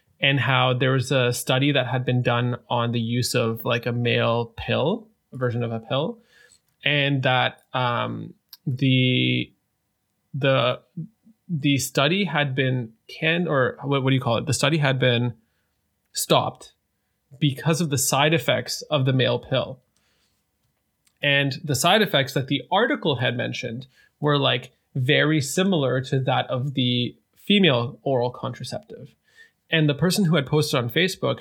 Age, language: 20-39, English